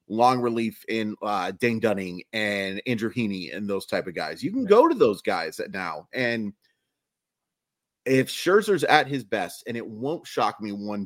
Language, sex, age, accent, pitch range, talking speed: English, male, 30-49, American, 100-140 Hz, 180 wpm